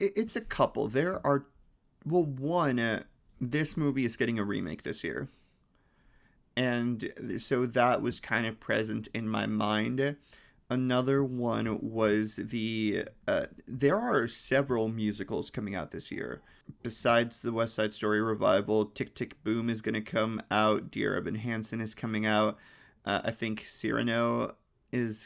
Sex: male